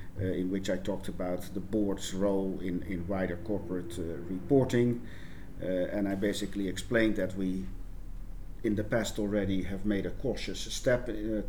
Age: 50-69